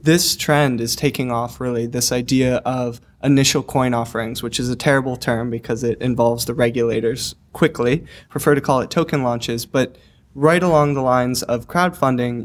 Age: 20-39